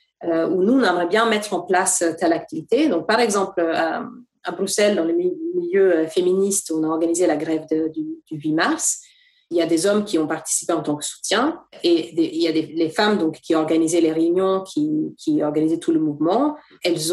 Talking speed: 215 wpm